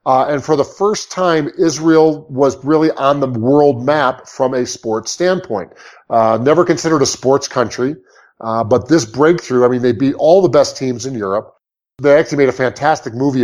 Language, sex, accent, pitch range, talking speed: English, male, American, 120-150 Hz, 190 wpm